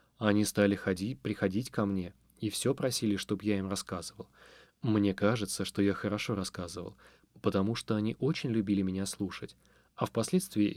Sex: male